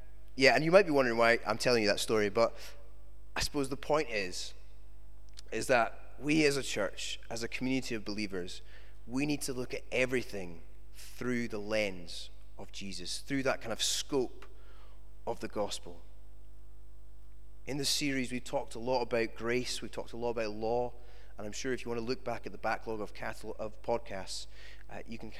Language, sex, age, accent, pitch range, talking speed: English, male, 20-39, British, 95-125 Hz, 185 wpm